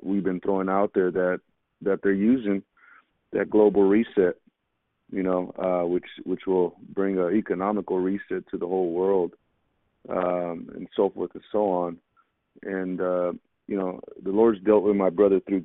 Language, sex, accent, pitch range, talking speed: English, male, American, 90-105 Hz, 170 wpm